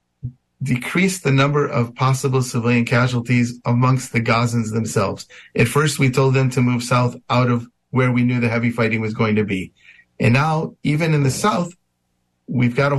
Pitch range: 115-140 Hz